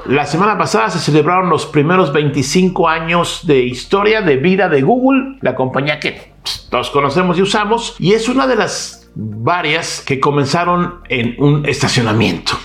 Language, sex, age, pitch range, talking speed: Spanish, male, 50-69, 135-195 Hz, 155 wpm